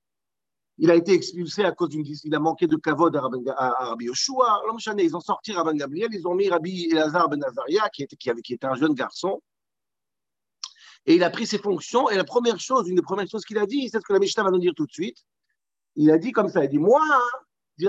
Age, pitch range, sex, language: 50-69, 165-255 Hz, male, French